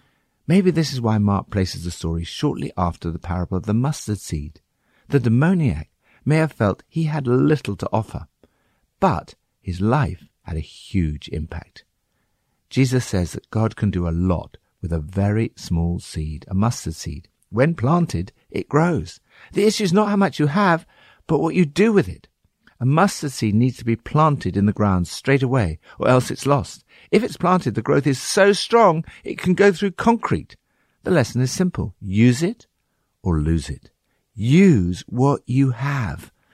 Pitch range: 90-140 Hz